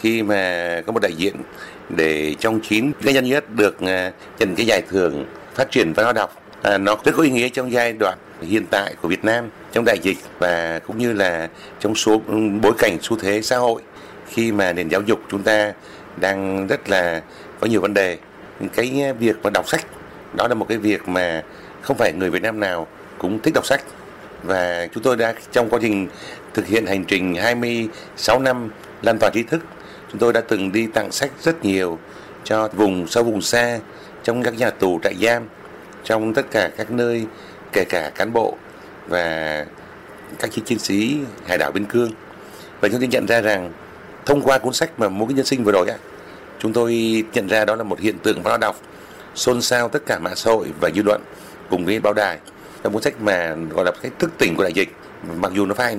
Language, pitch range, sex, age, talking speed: Vietnamese, 100-120 Hz, male, 60-79, 210 wpm